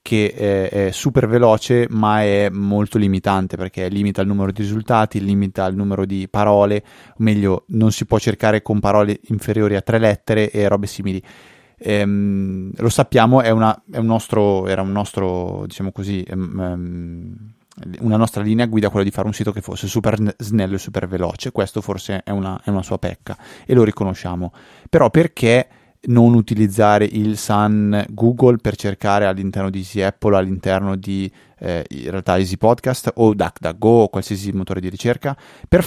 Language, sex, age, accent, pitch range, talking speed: Italian, male, 20-39, native, 100-115 Hz, 155 wpm